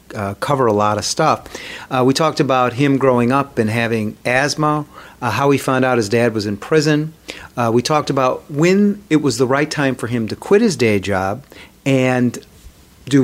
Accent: American